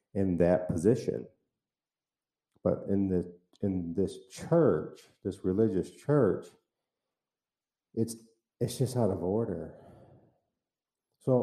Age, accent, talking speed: 50-69, American, 100 wpm